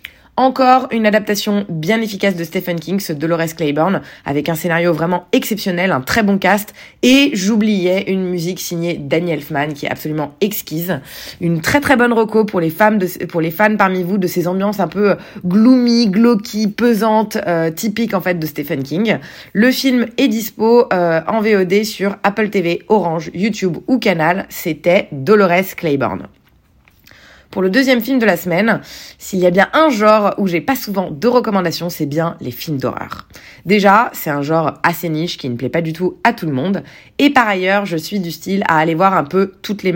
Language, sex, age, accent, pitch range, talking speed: French, female, 20-39, French, 165-215 Hz, 195 wpm